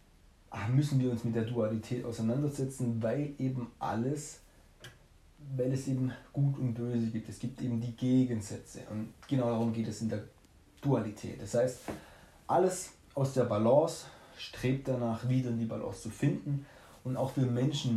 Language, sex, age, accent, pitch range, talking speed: German, male, 30-49, German, 110-135 Hz, 160 wpm